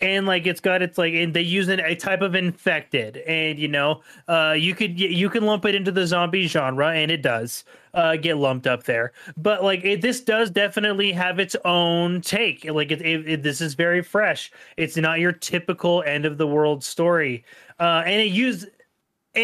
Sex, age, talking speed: male, 30-49, 205 wpm